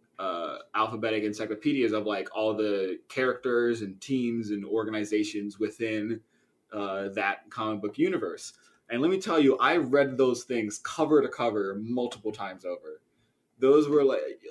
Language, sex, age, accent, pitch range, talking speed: English, male, 20-39, American, 105-130 Hz, 150 wpm